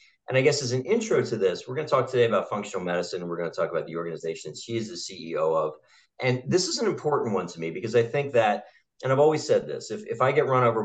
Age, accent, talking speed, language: 40-59, American, 290 wpm, English